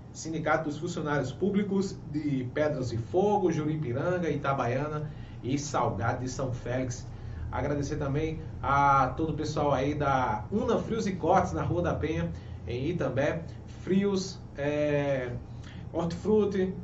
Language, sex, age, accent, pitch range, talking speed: Portuguese, male, 20-39, Brazilian, 130-175 Hz, 125 wpm